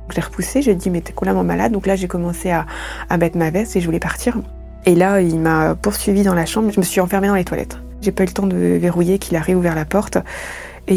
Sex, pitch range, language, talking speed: female, 165-200 Hz, French, 275 wpm